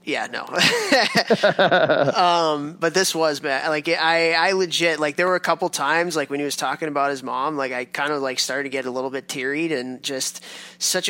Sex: male